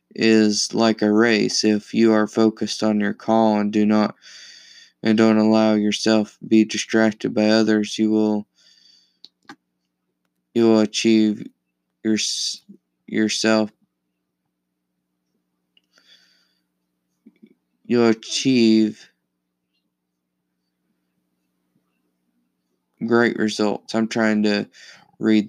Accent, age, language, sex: American, 20-39, English, male